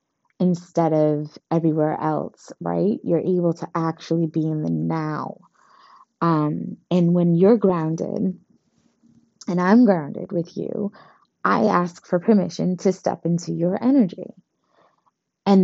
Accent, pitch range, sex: American, 170-205 Hz, female